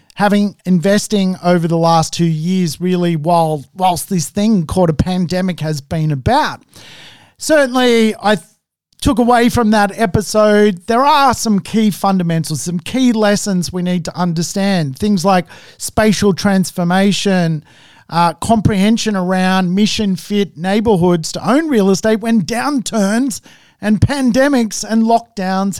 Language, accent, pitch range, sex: English, Australian, 180-230 Hz, male